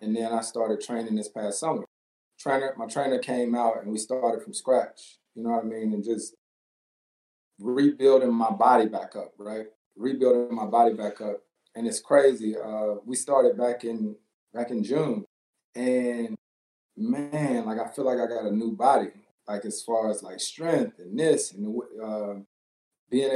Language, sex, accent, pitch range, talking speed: English, male, American, 110-150 Hz, 175 wpm